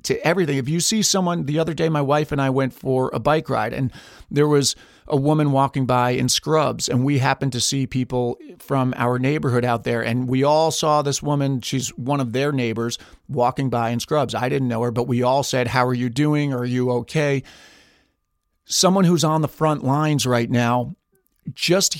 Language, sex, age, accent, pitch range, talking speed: English, male, 40-59, American, 125-150 Hz, 210 wpm